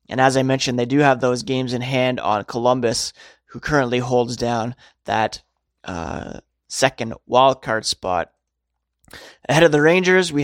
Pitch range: 125-150 Hz